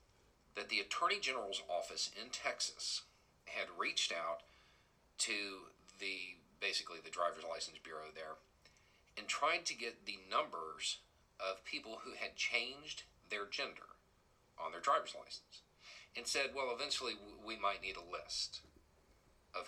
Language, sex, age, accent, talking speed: English, male, 40-59, American, 135 wpm